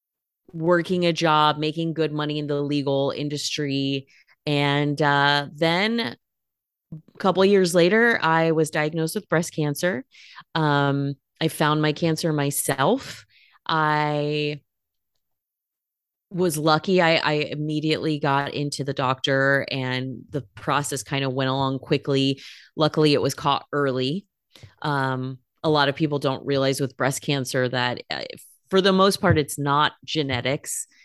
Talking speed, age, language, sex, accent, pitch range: 140 wpm, 30-49, English, female, American, 135-155 Hz